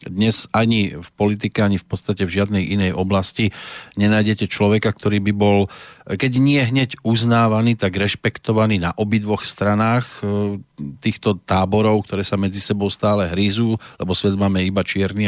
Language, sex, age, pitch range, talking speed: Slovak, male, 40-59, 100-125 Hz, 150 wpm